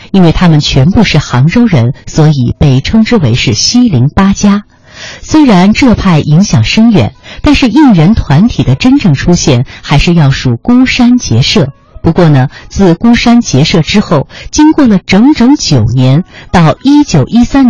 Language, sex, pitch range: Chinese, female, 140-225 Hz